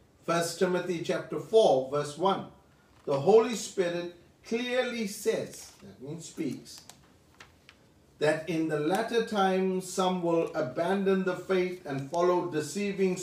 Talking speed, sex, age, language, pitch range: 120 wpm, male, 50-69, English, 140-185 Hz